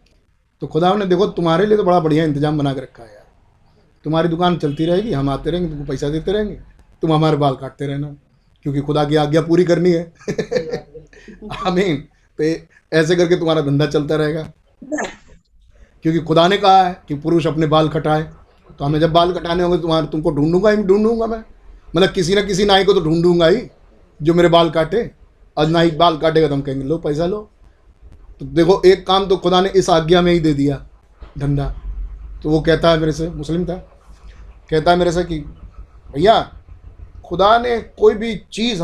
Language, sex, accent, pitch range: Hindi, male, native, 140-175 Hz